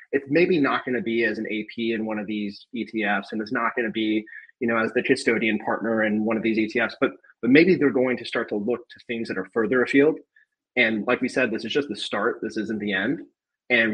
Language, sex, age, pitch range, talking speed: English, male, 20-39, 110-130 Hz, 260 wpm